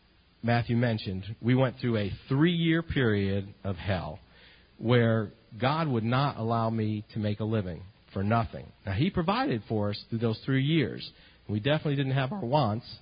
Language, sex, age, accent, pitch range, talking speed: English, male, 50-69, American, 105-140 Hz, 170 wpm